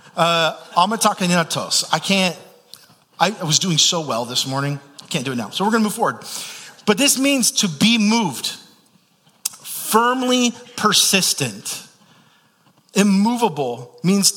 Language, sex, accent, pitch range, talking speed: English, male, American, 140-195 Hz, 125 wpm